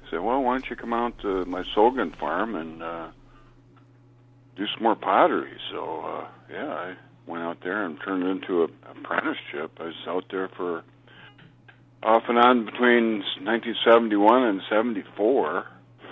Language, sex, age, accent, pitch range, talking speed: English, male, 50-69, American, 90-125 Hz, 155 wpm